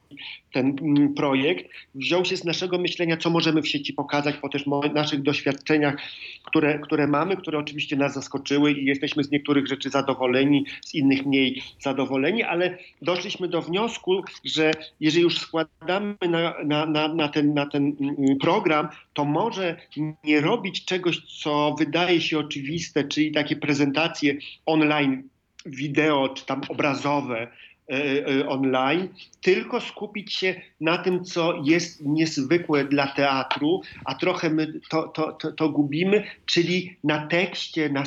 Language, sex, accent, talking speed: Polish, male, native, 135 wpm